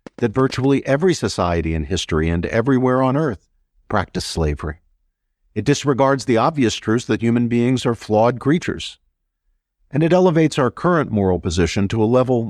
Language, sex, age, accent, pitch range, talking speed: English, male, 50-69, American, 85-125 Hz, 160 wpm